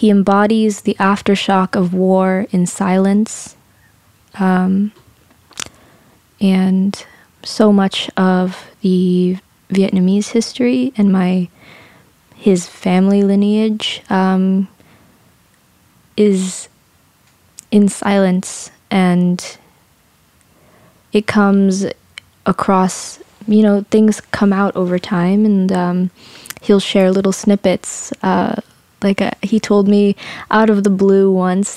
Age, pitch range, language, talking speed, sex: 20-39, 185-205 Hz, English, 100 wpm, female